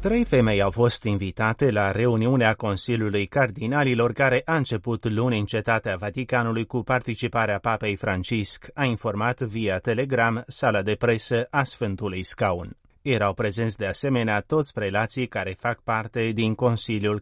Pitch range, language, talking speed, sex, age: 105-125 Hz, Romanian, 145 wpm, male, 30-49